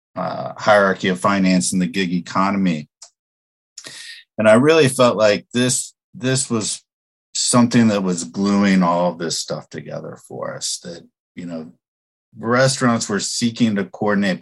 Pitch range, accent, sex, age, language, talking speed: 90-100 Hz, American, male, 50-69, English, 145 wpm